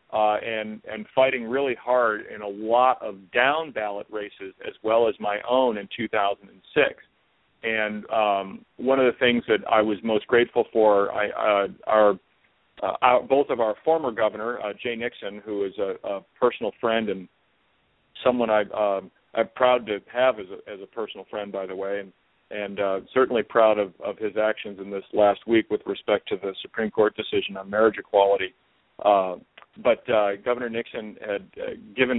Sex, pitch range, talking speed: male, 105-125 Hz, 180 wpm